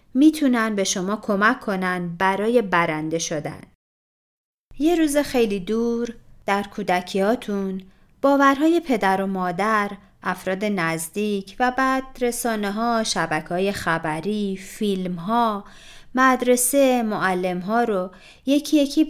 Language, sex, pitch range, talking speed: Persian, female, 185-260 Hz, 105 wpm